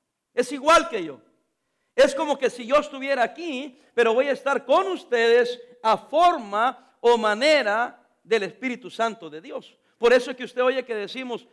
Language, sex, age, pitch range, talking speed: English, male, 50-69, 220-290 Hz, 175 wpm